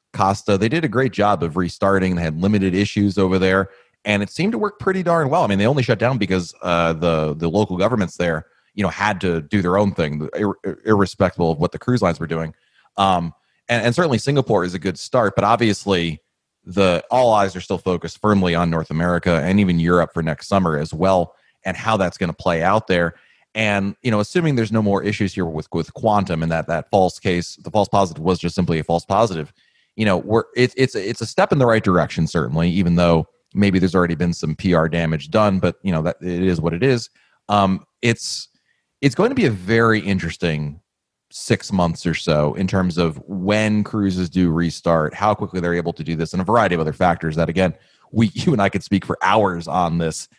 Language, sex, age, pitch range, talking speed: English, male, 30-49, 85-105 Hz, 225 wpm